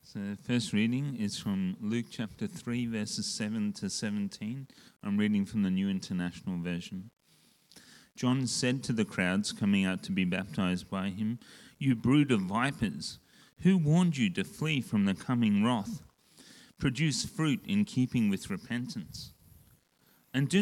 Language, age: English, 40-59